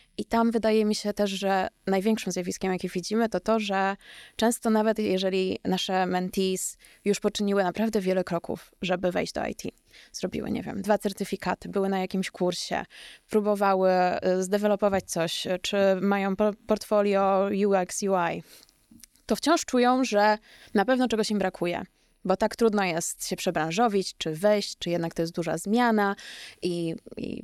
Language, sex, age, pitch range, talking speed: Polish, female, 20-39, 190-235 Hz, 155 wpm